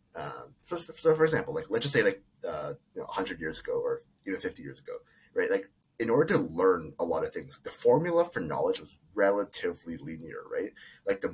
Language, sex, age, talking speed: English, male, 30-49, 215 wpm